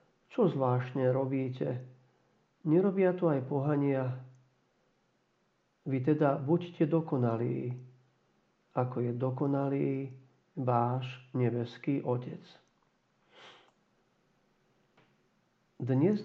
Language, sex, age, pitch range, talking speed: Slovak, male, 50-69, 125-160 Hz, 65 wpm